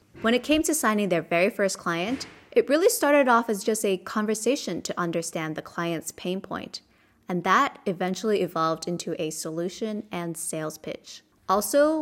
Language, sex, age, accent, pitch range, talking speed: English, female, 20-39, American, 175-240 Hz, 170 wpm